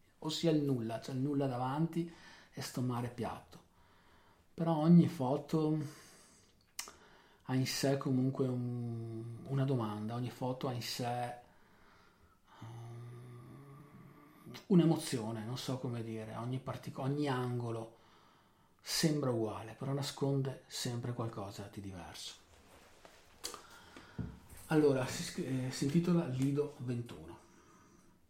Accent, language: native, Italian